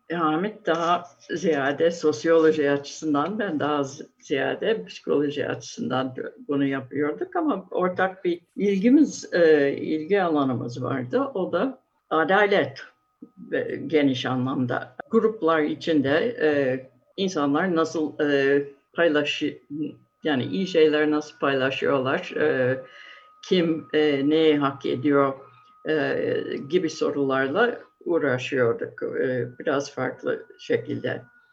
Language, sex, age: Turkish, female, 60-79